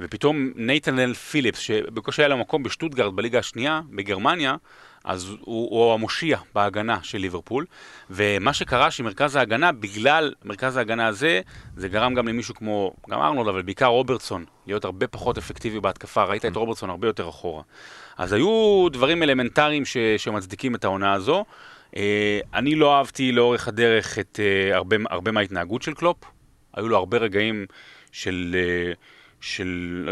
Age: 30-49